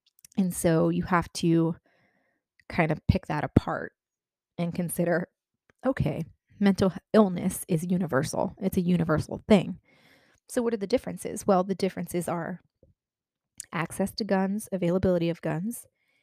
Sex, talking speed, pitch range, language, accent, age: female, 135 wpm, 165-195 Hz, English, American, 20-39